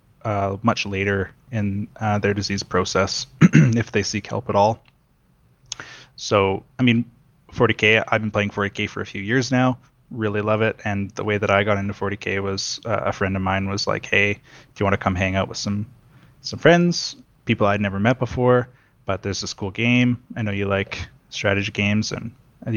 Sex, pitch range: male, 100-125 Hz